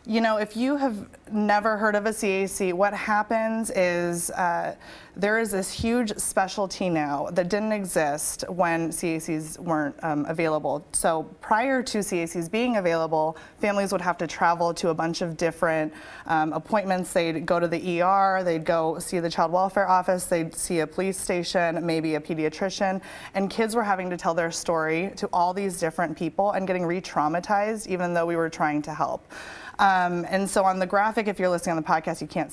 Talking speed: 190 wpm